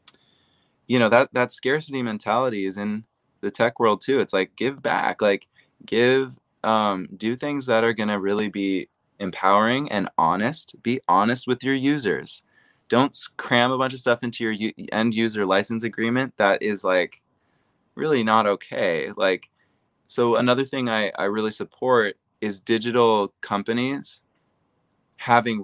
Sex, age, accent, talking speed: male, 20-39, American, 150 wpm